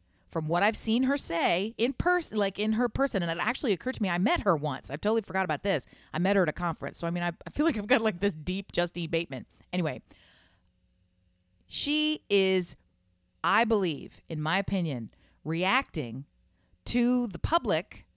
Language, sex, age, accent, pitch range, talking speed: English, female, 40-59, American, 165-250 Hz, 195 wpm